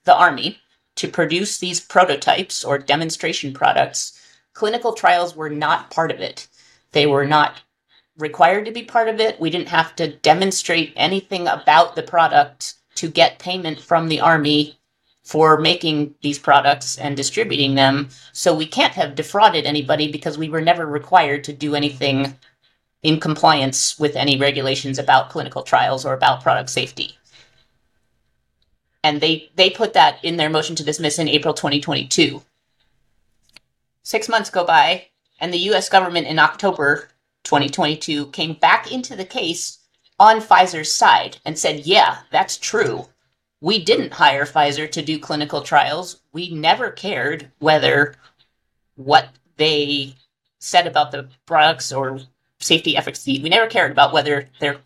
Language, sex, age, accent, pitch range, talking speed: English, female, 30-49, American, 140-170 Hz, 150 wpm